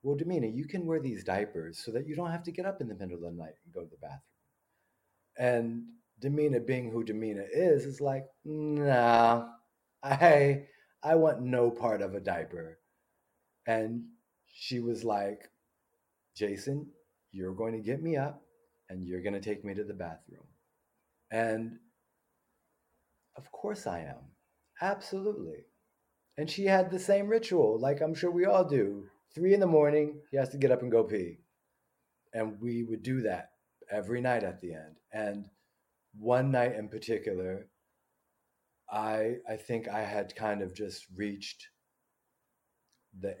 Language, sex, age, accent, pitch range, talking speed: English, male, 30-49, American, 100-140 Hz, 165 wpm